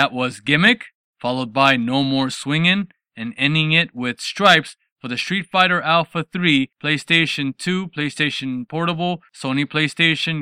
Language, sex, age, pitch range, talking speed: English, male, 20-39, 135-175 Hz, 145 wpm